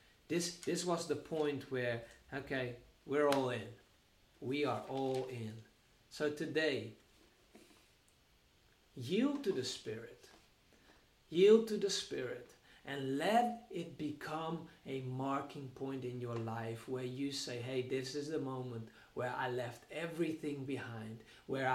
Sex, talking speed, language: male, 130 wpm, English